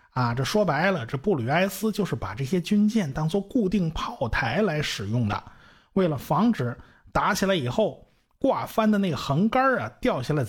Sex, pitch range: male, 135-210 Hz